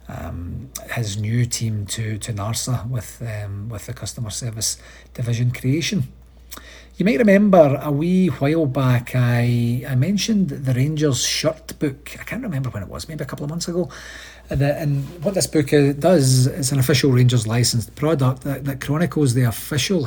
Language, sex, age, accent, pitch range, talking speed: English, male, 40-59, British, 120-145 Hz, 175 wpm